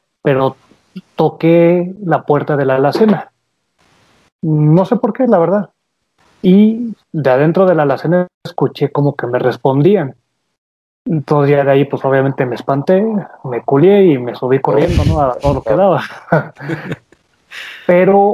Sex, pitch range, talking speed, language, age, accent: male, 130-170 Hz, 140 wpm, Spanish, 30-49, Mexican